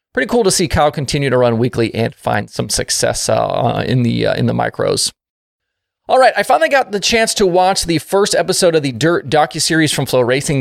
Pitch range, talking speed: 135-200 Hz, 225 wpm